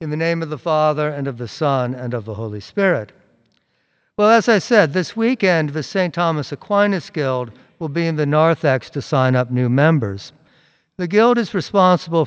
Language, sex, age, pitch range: English, male, 50-69, 130-160 Hz